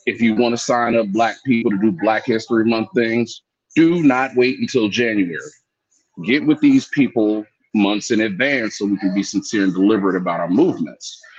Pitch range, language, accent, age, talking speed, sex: 100-125 Hz, English, American, 30-49, 190 wpm, male